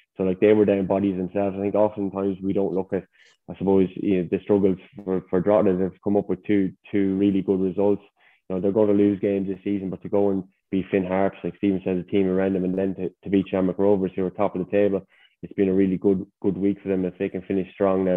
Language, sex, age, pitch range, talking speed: English, male, 20-39, 90-100 Hz, 270 wpm